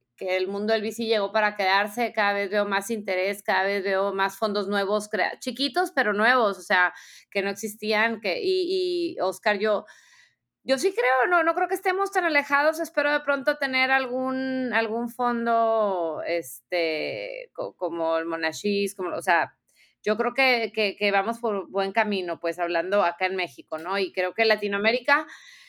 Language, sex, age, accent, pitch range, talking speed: Spanish, female, 30-49, Mexican, 200-260 Hz, 180 wpm